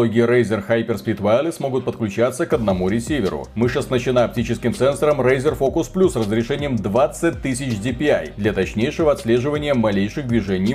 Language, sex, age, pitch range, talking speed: Russian, male, 30-49, 115-145 Hz, 135 wpm